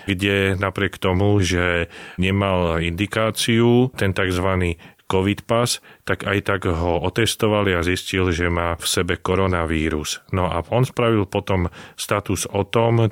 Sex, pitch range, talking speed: male, 90-105 Hz, 135 wpm